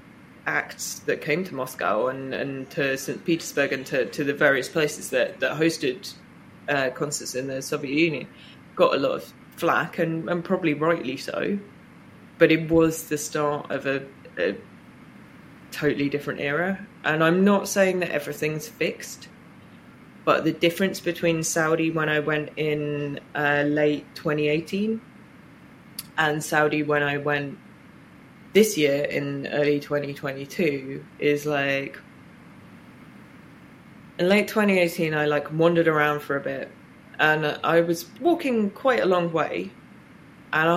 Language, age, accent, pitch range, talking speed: English, 20-39, British, 145-175 Hz, 140 wpm